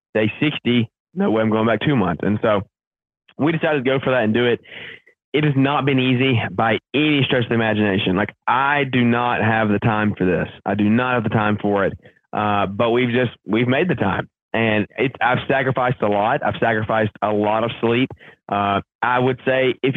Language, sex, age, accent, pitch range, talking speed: English, male, 20-39, American, 105-130 Hz, 220 wpm